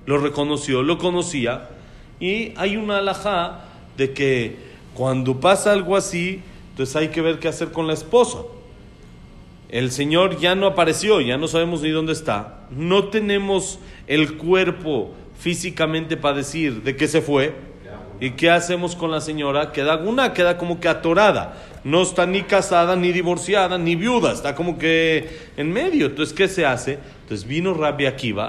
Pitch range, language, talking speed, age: 140-190 Hz, Spanish, 165 wpm, 40-59